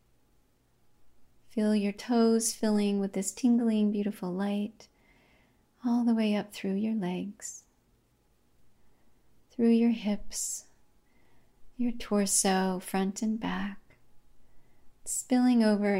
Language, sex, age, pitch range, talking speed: English, female, 30-49, 190-225 Hz, 100 wpm